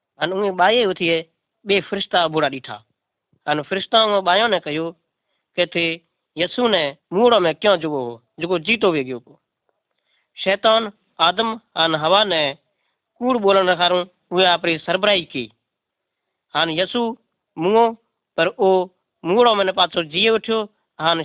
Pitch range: 165-210 Hz